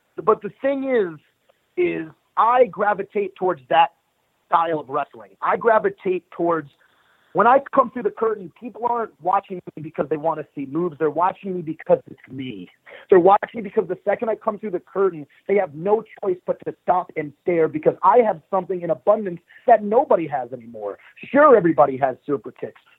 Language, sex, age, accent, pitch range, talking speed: English, male, 40-59, American, 150-215 Hz, 190 wpm